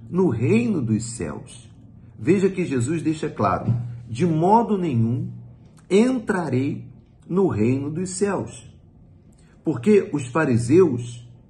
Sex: male